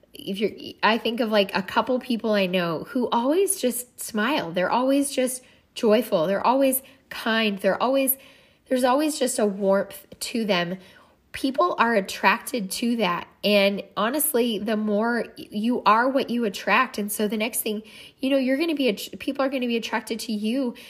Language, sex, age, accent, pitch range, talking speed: English, female, 10-29, American, 190-245 Hz, 185 wpm